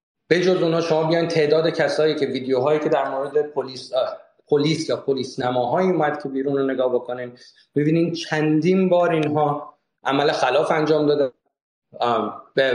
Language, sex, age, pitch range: Persian, male, 30-49, 145-185 Hz